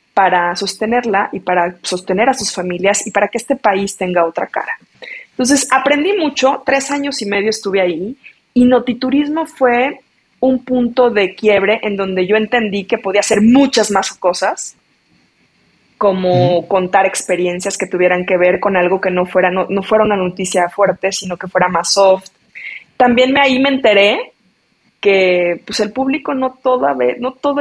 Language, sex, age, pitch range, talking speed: Spanish, female, 20-39, 190-255 Hz, 170 wpm